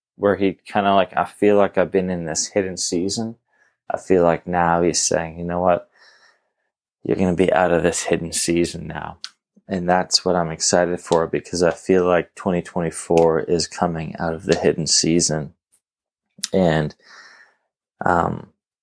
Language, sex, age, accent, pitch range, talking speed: English, male, 20-39, American, 85-105 Hz, 170 wpm